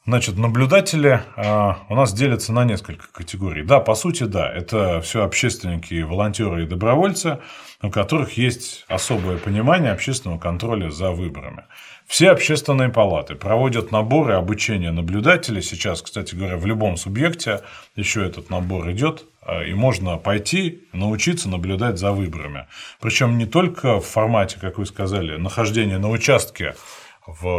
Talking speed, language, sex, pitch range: 140 wpm, Russian, male, 95-130 Hz